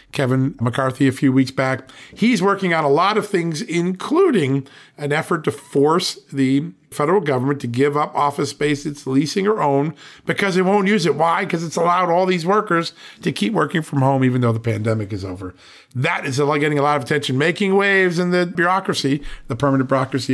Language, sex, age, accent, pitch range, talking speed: English, male, 50-69, American, 125-175 Hz, 200 wpm